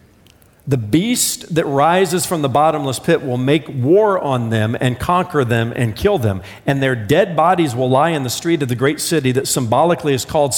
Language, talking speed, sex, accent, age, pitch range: English, 205 wpm, male, American, 50-69, 120-170 Hz